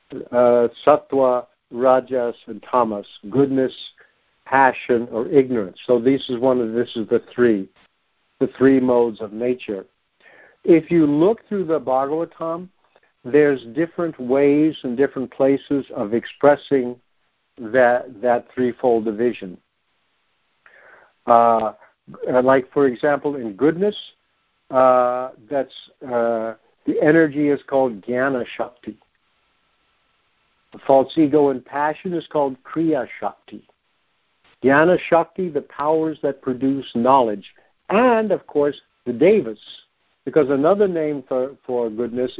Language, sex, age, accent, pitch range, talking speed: English, male, 60-79, American, 120-145 Hz, 115 wpm